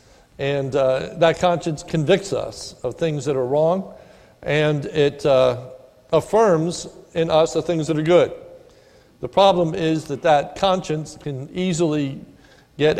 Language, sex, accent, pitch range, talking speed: English, male, American, 140-180 Hz, 145 wpm